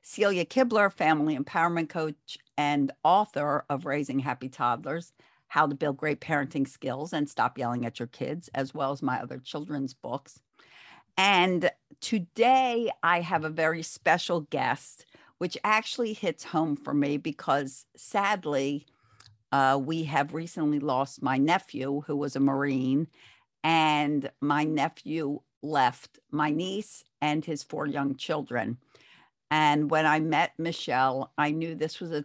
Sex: female